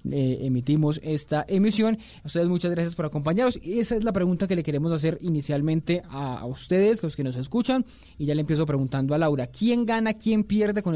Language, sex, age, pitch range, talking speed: Spanish, male, 20-39, 145-180 Hz, 215 wpm